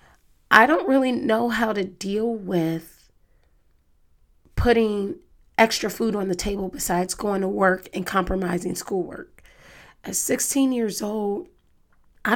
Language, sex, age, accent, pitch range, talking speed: English, female, 30-49, American, 180-205 Hz, 125 wpm